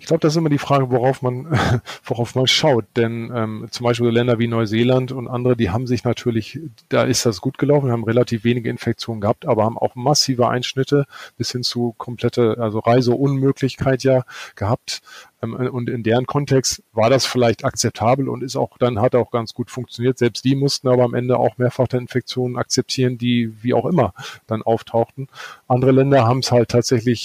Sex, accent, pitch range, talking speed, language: male, German, 115-130 Hz, 195 wpm, German